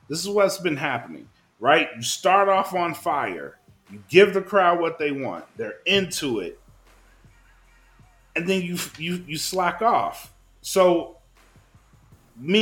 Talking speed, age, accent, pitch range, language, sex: 145 wpm, 30-49, American, 140-200 Hz, English, male